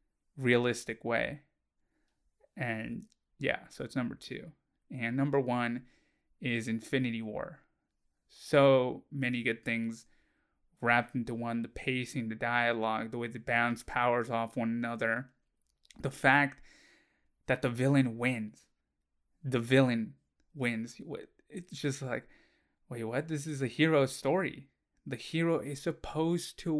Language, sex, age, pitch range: English, male, 20-39, 120-140 Hz